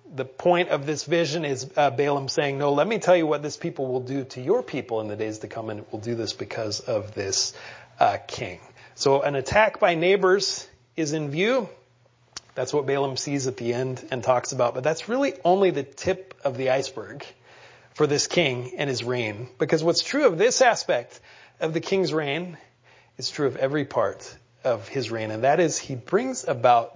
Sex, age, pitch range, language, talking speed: male, 30-49, 120-155 Hz, English, 210 wpm